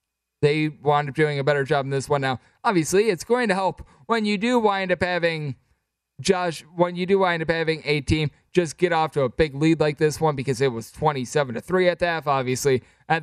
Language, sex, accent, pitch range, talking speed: English, male, American, 145-175 Hz, 235 wpm